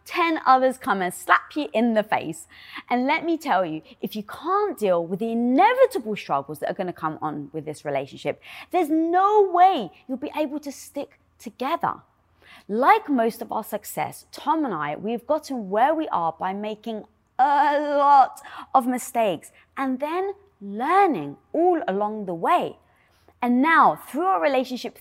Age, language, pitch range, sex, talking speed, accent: 20-39, English, 200-300 Hz, female, 170 wpm, British